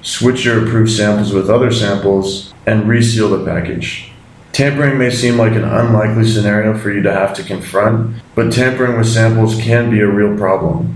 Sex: male